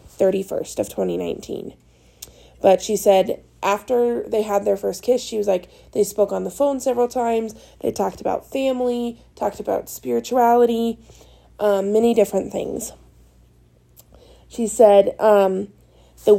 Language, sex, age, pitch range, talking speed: English, female, 20-39, 185-220 Hz, 135 wpm